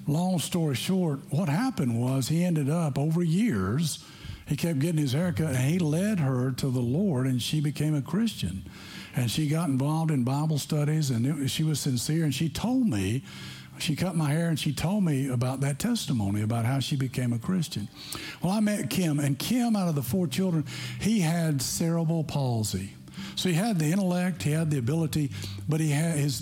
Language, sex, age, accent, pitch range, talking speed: English, male, 60-79, American, 125-170 Hz, 200 wpm